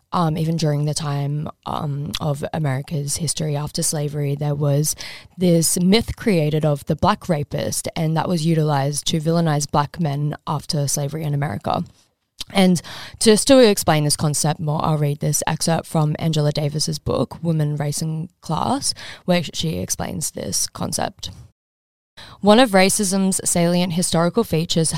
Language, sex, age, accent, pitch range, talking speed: English, female, 10-29, Australian, 155-175 Hz, 150 wpm